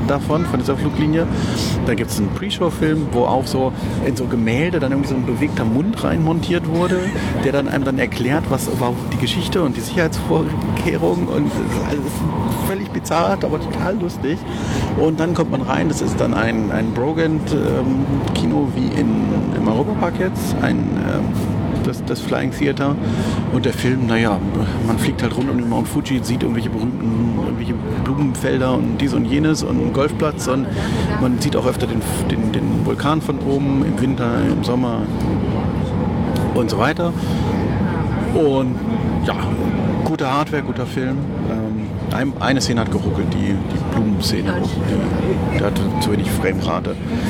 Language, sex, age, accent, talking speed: German, male, 40-59, German, 160 wpm